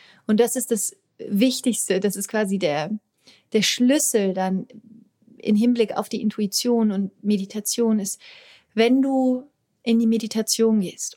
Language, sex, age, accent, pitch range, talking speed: German, female, 30-49, German, 195-230 Hz, 140 wpm